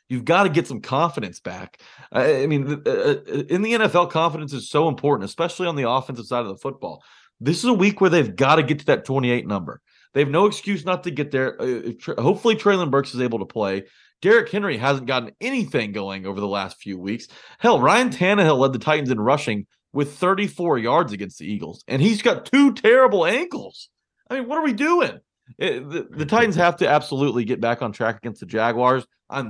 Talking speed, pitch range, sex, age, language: 210 wpm, 125-180 Hz, male, 30-49, English